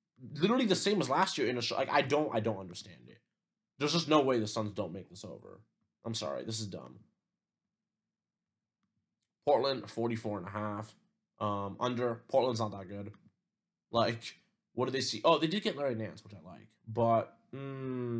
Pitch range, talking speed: 105-125 Hz, 190 wpm